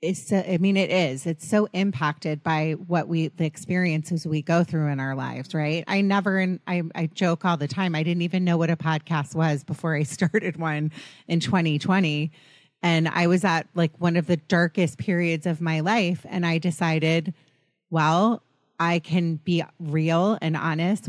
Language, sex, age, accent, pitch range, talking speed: English, female, 30-49, American, 155-180 Hz, 180 wpm